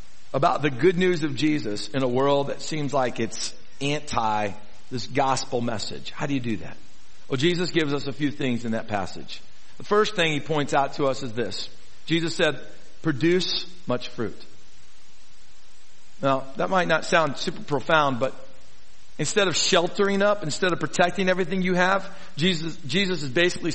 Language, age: English, 50-69